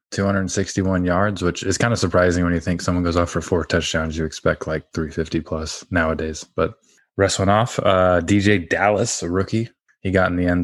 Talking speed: 205 wpm